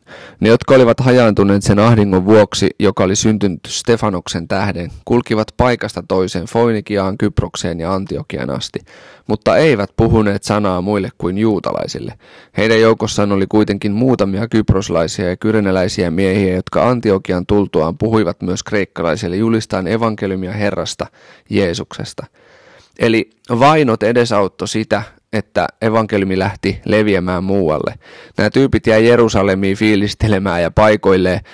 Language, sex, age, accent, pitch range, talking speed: Finnish, male, 30-49, native, 95-110 Hz, 120 wpm